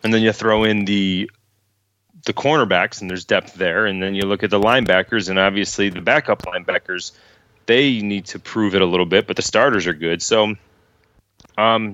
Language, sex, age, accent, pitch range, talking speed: English, male, 30-49, American, 90-105 Hz, 195 wpm